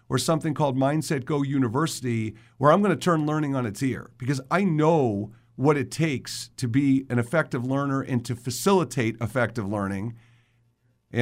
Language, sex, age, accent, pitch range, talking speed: English, male, 50-69, American, 120-155 Hz, 165 wpm